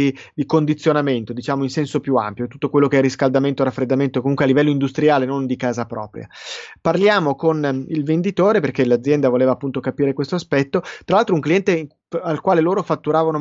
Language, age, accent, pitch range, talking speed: Italian, 20-39, native, 135-170 Hz, 180 wpm